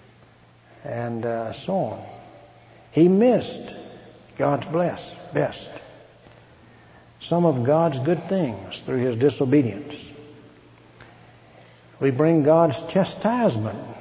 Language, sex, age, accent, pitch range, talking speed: English, male, 60-79, American, 135-200 Hz, 90 wpm